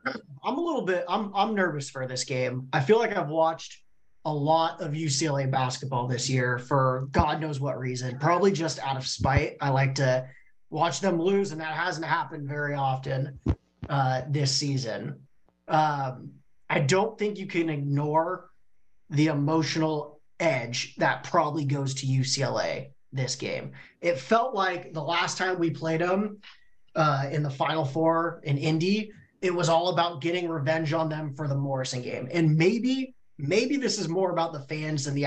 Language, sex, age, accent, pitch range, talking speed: English, male, 30-49, American, 135-170 Hz, 180 wpm